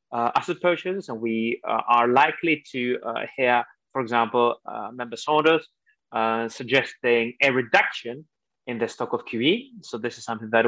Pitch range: 120-150 Hz